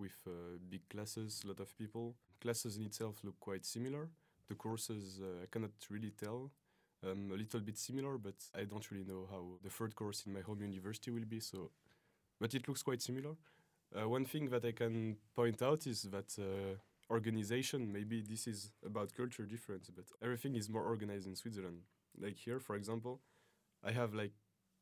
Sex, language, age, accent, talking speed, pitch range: male, Russian, 20-39, French, 190 wpm, 100-120 Hz